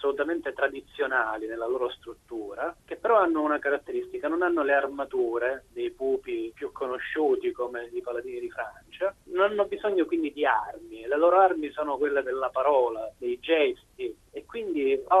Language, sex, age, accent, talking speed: Italian, male, 30-49, native, 160 wpm